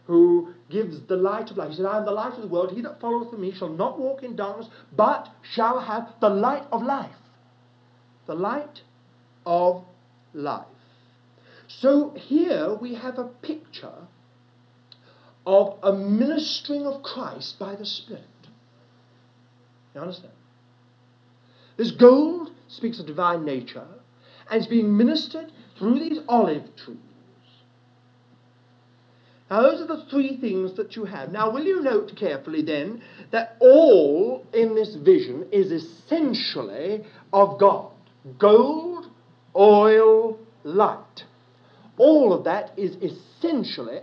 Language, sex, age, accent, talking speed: English, male, 50-69, British, 130 wpm